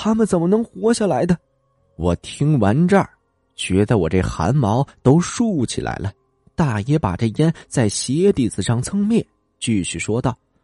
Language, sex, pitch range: Chinese, male, 115-180 Hz